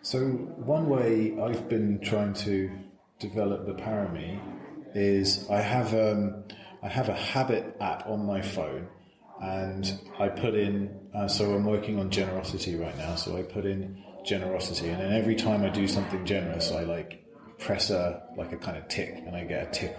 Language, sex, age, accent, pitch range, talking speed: English, male, 30-49, British, 95-110 Hz, 185 wpm